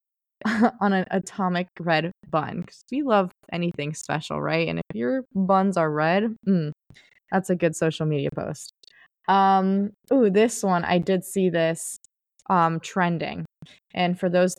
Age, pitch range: 20-39, 175-215 Hz